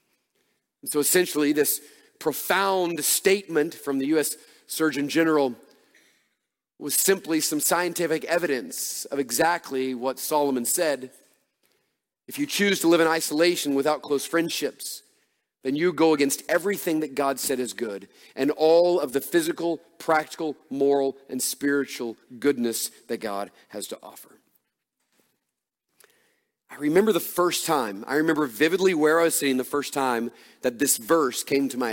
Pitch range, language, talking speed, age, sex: 135-165 Hz, English, 145 wpm, 40-59, male